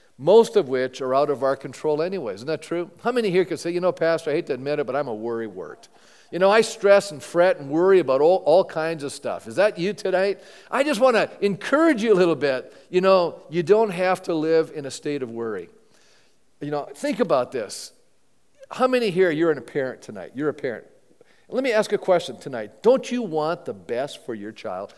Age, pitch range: 50-69, 150-225 Hz